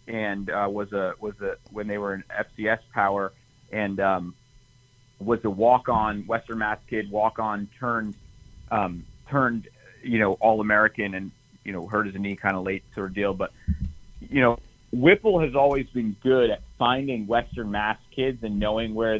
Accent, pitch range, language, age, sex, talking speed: American, 105-125 Hz, English, 30-49, male, 175 wpm